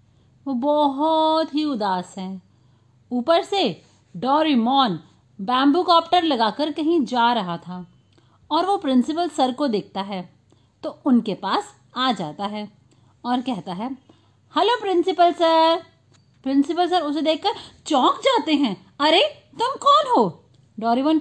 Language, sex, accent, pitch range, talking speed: Hindi, female, native, 235-340 Hz, 130 wpm